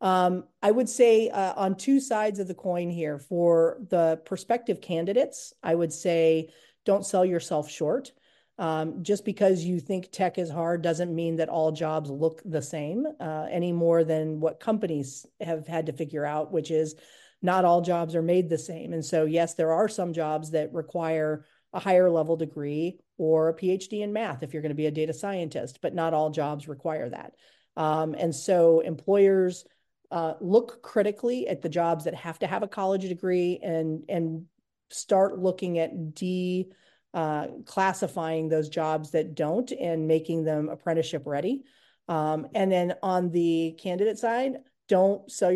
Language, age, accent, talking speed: English, 40-59, American, 175 wpm